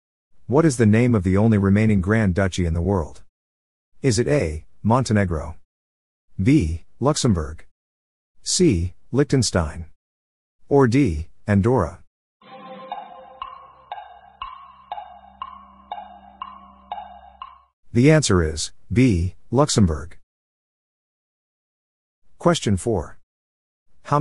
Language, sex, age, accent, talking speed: English, male, 50-69, American, 80 wpm